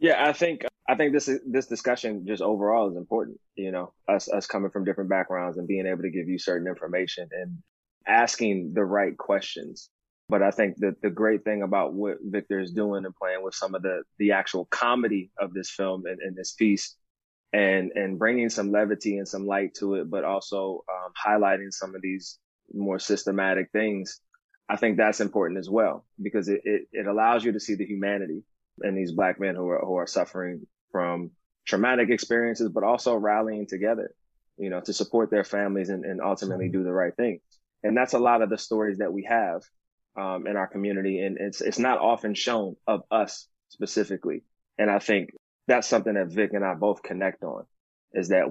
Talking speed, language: 205 wpm, English